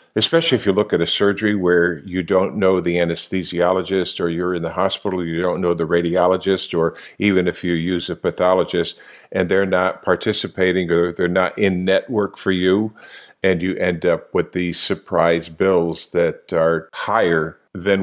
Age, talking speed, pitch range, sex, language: 50-69, 175 wpm, 85-100 Hz, male, English